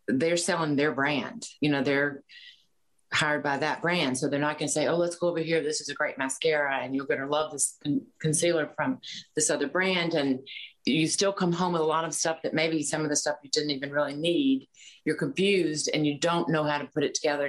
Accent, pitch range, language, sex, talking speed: American, 140-160 Hz, English, female, 245 wpm